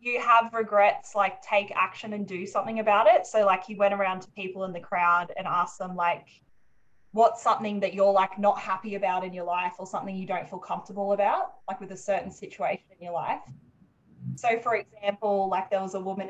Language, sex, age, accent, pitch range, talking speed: English, female, 20-39, Australian, 185-215 Hz, 215 wpm